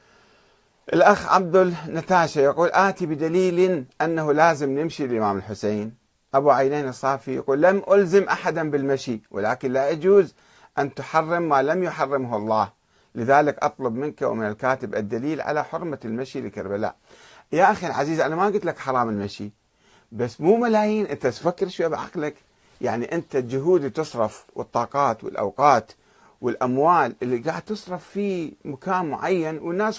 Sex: male